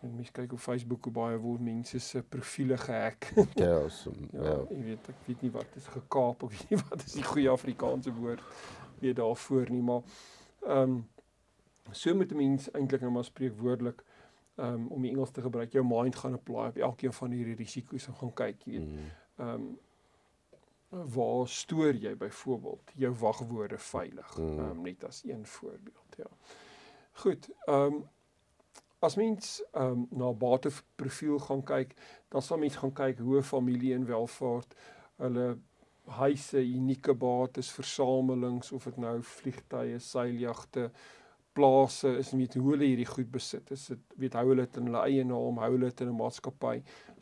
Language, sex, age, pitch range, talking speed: Dutch, male, 50-69, 120-135 Hz, 160 wpm